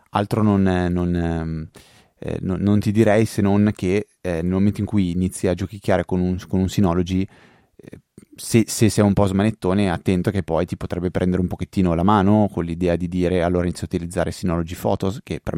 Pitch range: 90-105 Hz